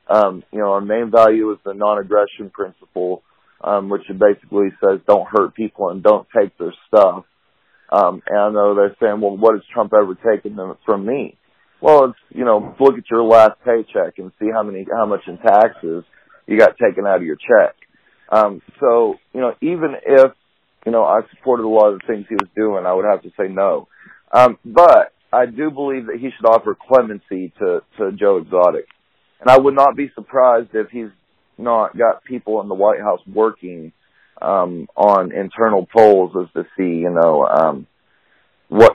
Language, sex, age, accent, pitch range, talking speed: English, male, 40-59, American, 100-130 Hz, 195 wpm